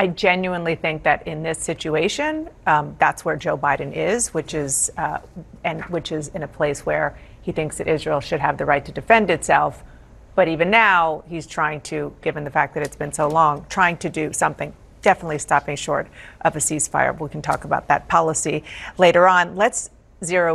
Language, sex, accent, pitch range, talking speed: English, female, American, 155-185 Hz, 200 wpm